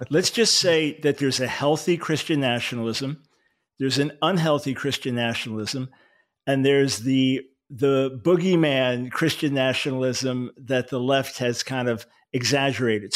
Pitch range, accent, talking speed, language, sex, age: 130-155 Hz, American, 130 wpm, English, male, 50-69